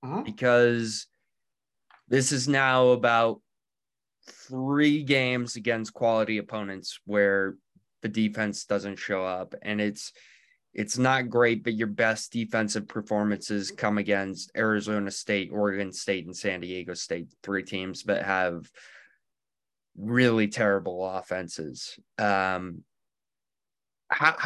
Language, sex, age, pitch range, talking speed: English, male, 20-39, 105-120 Hz, 110 wpm